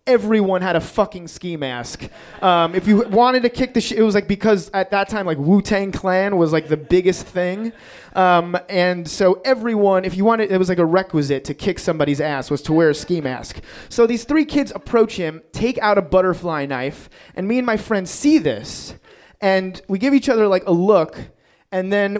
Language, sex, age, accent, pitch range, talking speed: English, male, 30-49, American, 175-225 Hz, 215 wpm